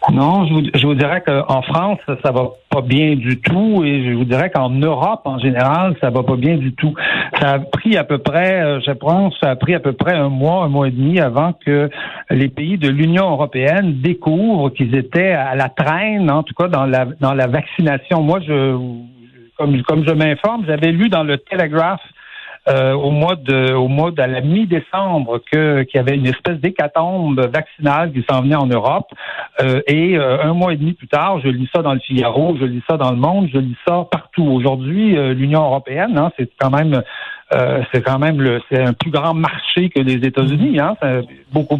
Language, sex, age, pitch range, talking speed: French, male, 60-79, 135-165 Hz, 220 wpm